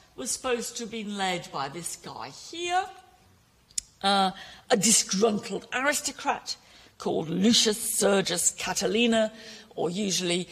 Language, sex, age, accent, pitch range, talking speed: English, female, 50-69, British, 185-245 Hz, 115 wpm